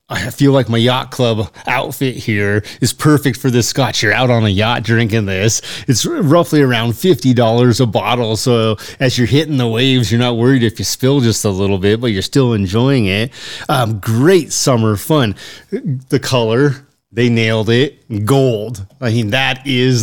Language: English